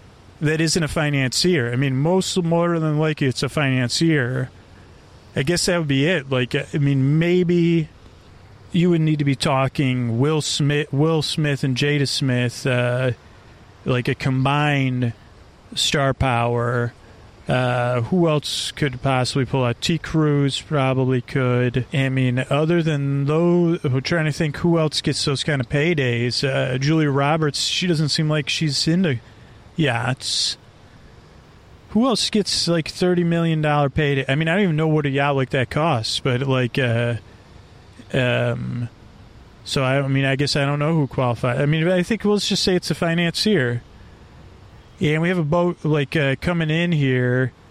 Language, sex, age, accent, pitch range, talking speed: English, male, 30-49, American, 125-160 Hz, 170 wpm